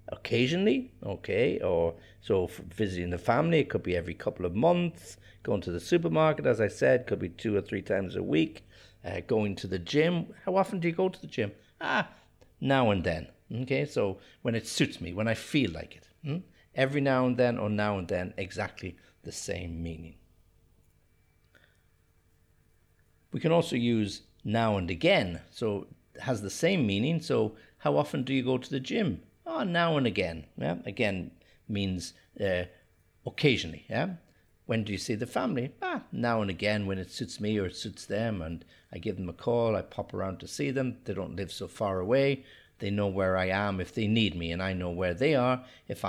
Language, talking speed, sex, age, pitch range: English, 200 wpm, male, 60-79, 90-130 Hz